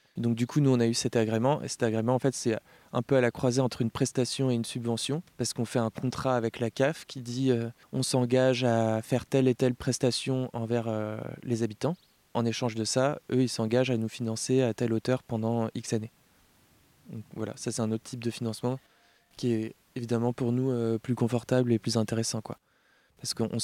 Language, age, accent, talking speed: French, 20-39, French, 220 wpm